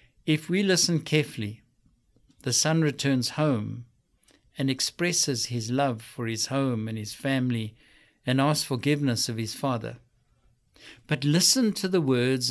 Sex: male